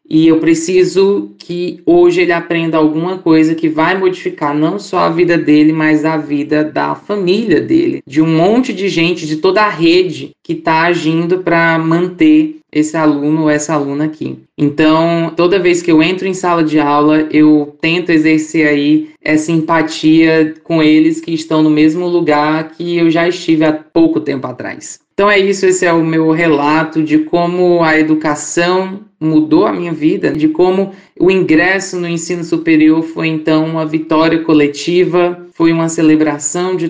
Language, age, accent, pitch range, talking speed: Portuguese, 20-39, Brazilian, 155-175 Hz, 170 wpm